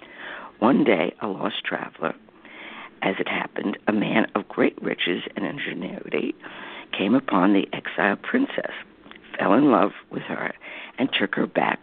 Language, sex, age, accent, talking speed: English, female, 60-79, American, 145 wpm